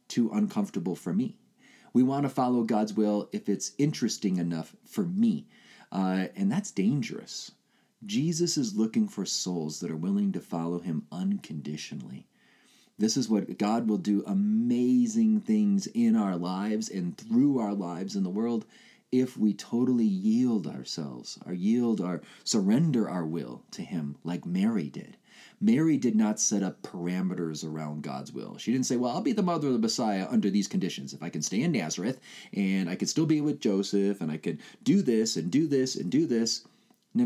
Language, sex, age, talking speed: English, male, 30-49, 185 wpm